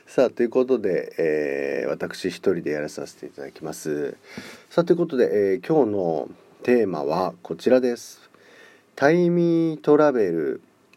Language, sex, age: Japanese, male, 40-59